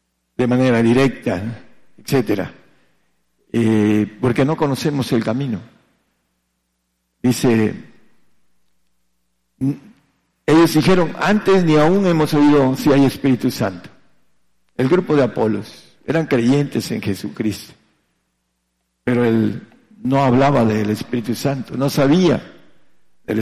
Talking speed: 100 wpm